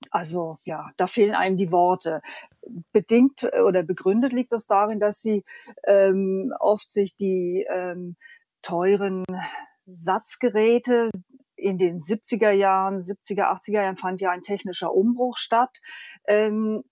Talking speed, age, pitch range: 130 wpm, 40-59, 190-240 Hz